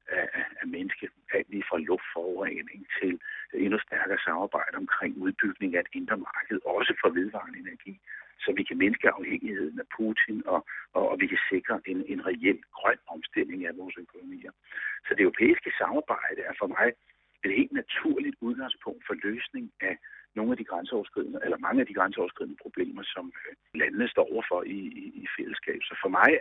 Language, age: Danish, 60-79